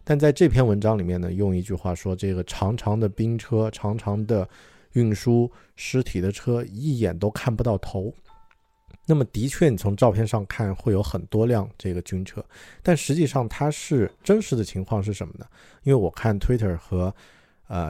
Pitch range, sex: 95-120 Hz, male